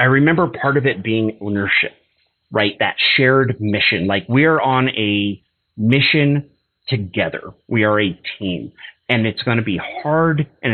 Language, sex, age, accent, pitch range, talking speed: English, male, 30-49, American, 100-130 Hz, 155 wpm